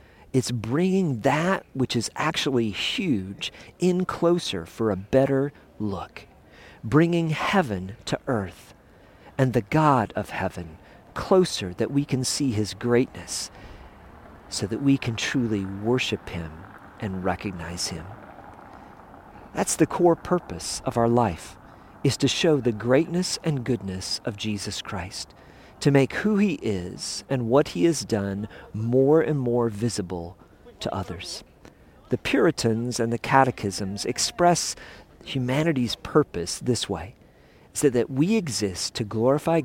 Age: 50-69